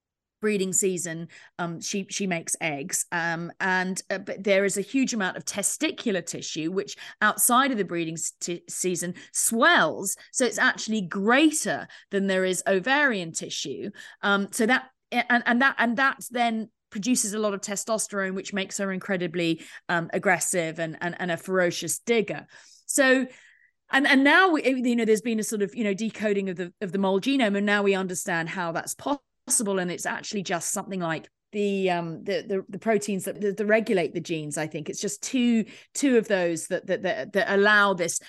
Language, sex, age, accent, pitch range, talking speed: English, female, 30-49, British, 185-230 Hz, 190 wpm